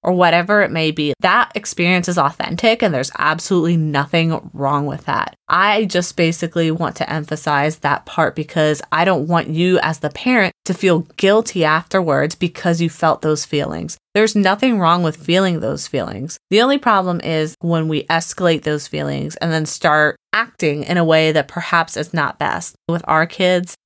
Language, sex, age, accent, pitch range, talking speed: English, female, 20-39, American, 160-185 Hz, 180 wpm